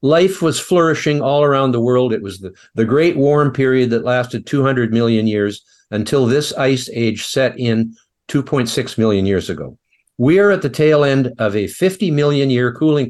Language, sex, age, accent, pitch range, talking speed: English, male, 50-69, American, 115-145 Hz, 190 wpm